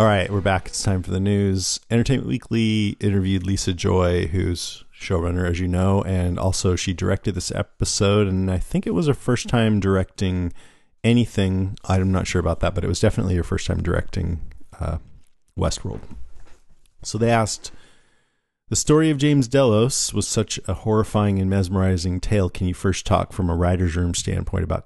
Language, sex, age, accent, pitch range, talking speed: English, male, 40-59, American, 90-100 Hz, 180 wpm